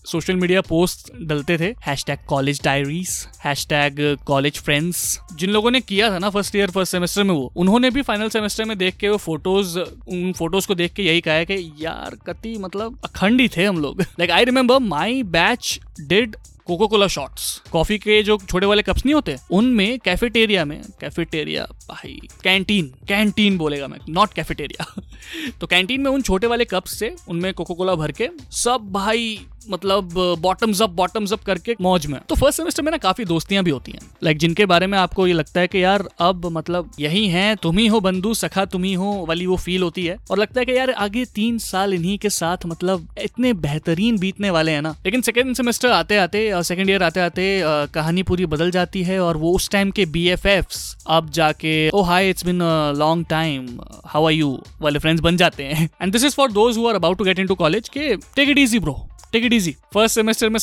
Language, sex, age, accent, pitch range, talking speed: Hindi, male, 20-39, native, 165-215 Hz, 165 wpm